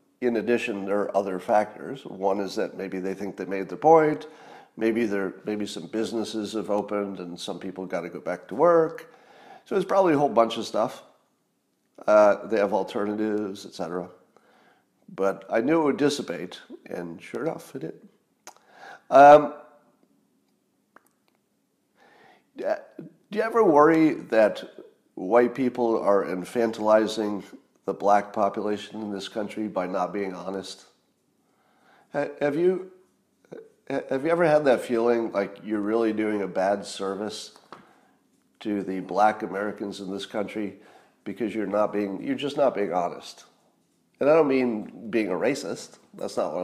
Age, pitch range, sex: 50-69, 100-130 Hz, male